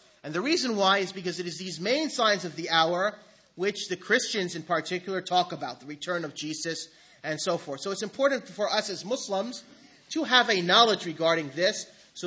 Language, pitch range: English, 165-210 Hz